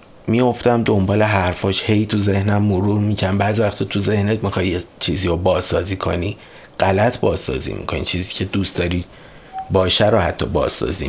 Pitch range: 90-110 Hz